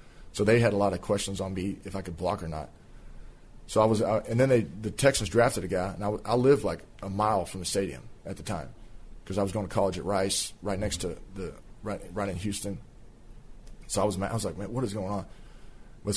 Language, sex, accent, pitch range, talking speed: English, male, American, 95-110 Hz, 260 wpm